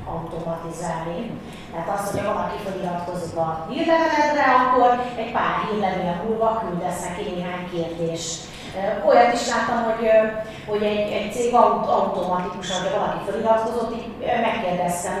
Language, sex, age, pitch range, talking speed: Hungarian, female, 30-49, 175-225 Hz, 120 wpm